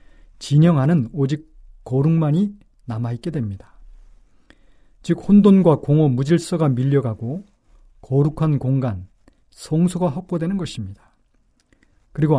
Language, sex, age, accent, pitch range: Korean, male, 40-59, native, 125-170 Hz